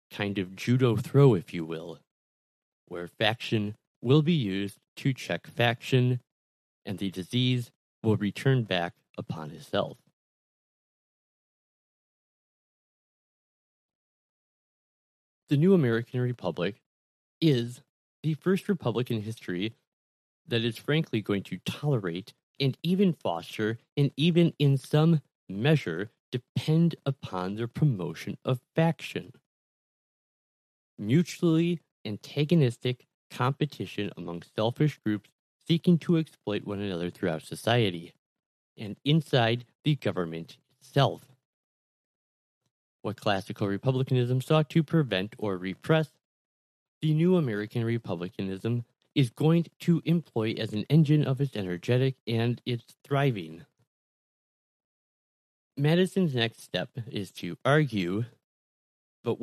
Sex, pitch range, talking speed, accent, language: male, 100-150 Hz, 105 wpm, American, English